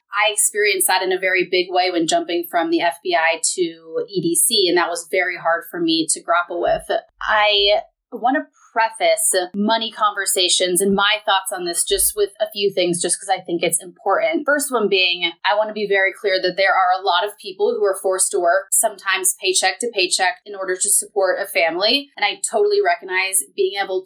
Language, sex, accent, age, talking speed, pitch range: English, female, American, 30-49, 210 wpm, 180-280 Hz